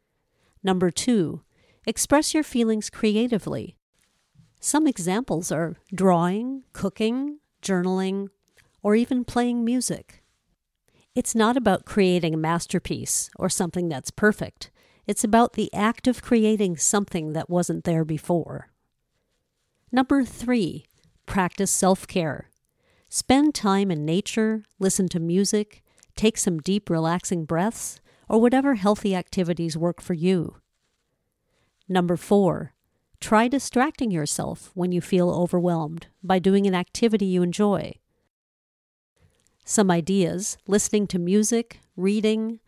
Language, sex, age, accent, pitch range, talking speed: English, female, 50-69, American, 175-220 Hz, 115 wpm